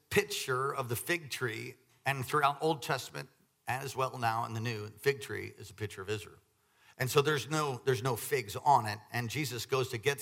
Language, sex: English, male